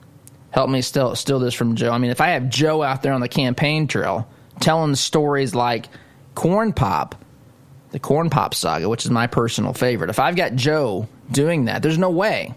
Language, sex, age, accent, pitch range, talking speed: English, male, 20-39, American, 120-140 Hz, 200 wpm